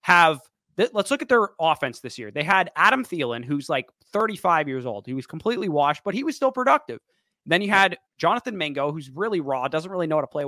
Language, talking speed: English, 230 wpm